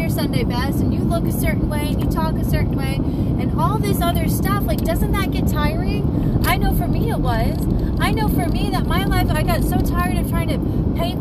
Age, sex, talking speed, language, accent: 30-49, female, 240 wpm, English, American